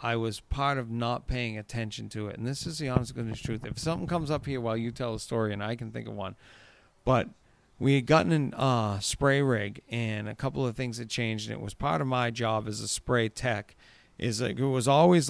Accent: American